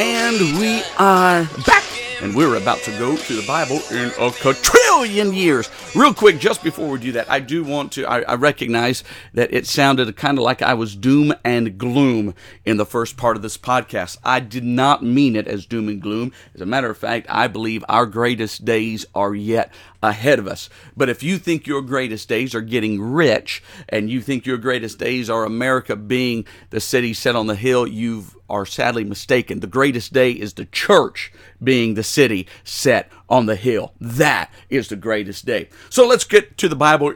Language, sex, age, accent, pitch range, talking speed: English, male, 50-69, American, 110-140 Hz, 200 wpm